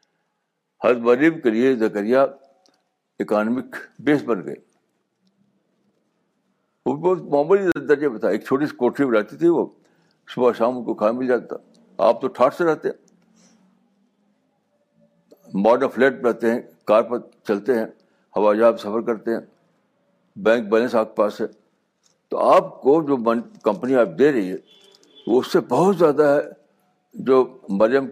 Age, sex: 60-79, male